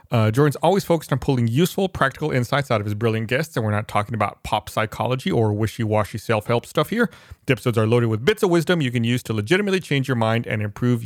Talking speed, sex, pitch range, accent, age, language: 240 wpm, male, 115-160 Hz, American, 40-59, English